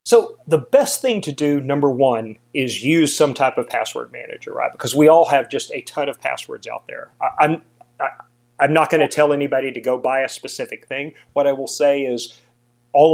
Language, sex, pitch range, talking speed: English, male, 125-155 Hz, 220 wpm